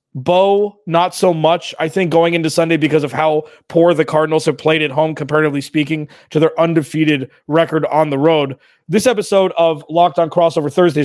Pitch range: 145-180 Hz